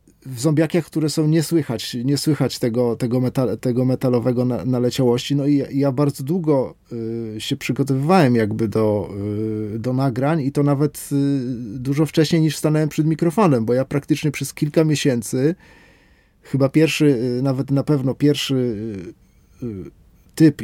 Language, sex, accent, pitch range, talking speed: Polish, male, native, 115-145 Hz, 140 wpm